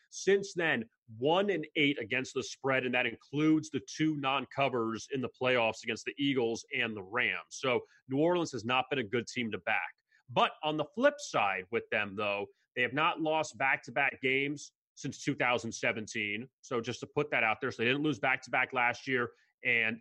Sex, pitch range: male, 125-155 Hz